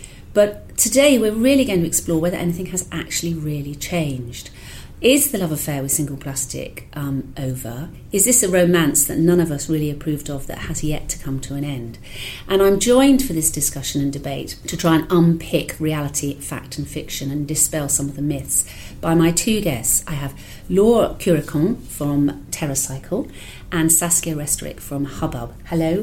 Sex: female